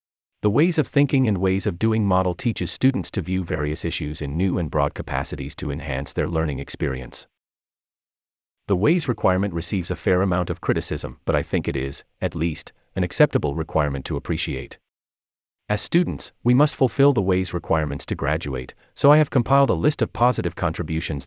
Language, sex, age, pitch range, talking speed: English, male, 40-59, 75-120 Hz, 185 wpm